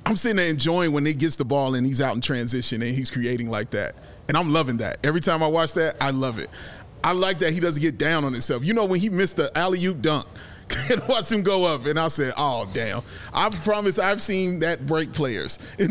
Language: English